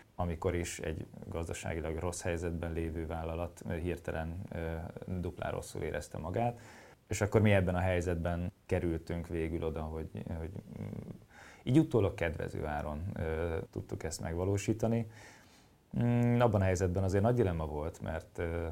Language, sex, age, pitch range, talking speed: Hungarian, male, 30-49, 85-105 Hz, 125 wpm